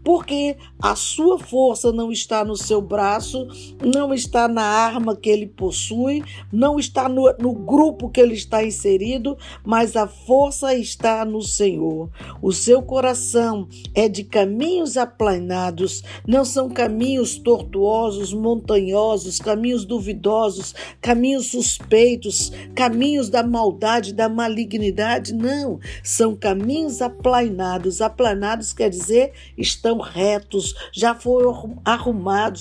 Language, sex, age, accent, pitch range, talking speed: Portuguese, female, 50-69, Brazilian, 205-260 Hz, 120 wpm